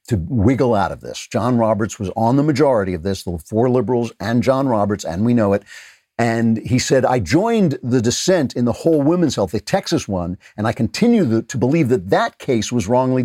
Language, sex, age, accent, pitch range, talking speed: English, male, 50-69, American, 100-135 Hz, 220 wpm